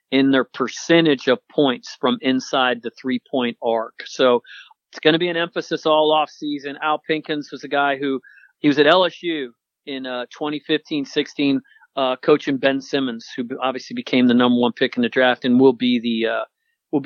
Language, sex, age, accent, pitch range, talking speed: English, male, 40-59, American, 130-155 Hz, 185 wpm